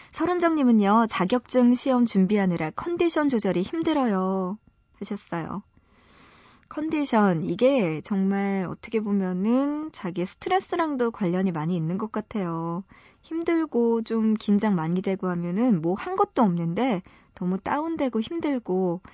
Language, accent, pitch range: Korean, native, 180-245 Hz